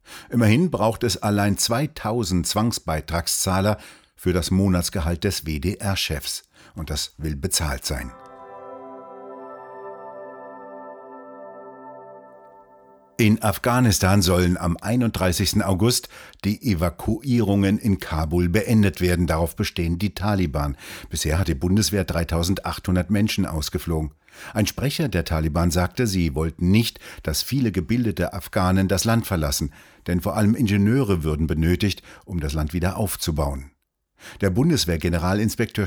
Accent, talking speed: German, 110 wpm